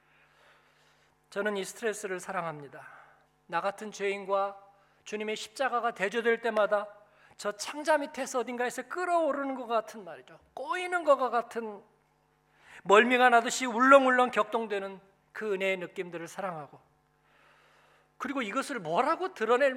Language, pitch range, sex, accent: Korean, 195-255 Hz, male, native